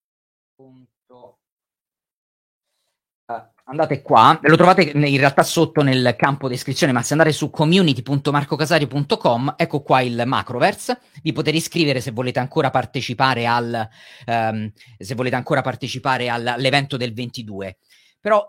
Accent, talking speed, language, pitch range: native, 115 wpm, Italian, 130-175 Hz